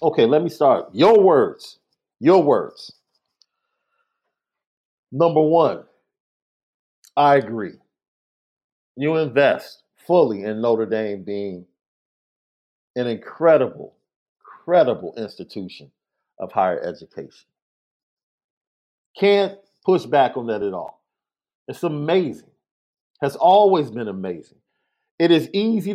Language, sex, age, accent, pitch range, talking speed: English, male, 50-69, American, 125-185 Hz, 95 wpm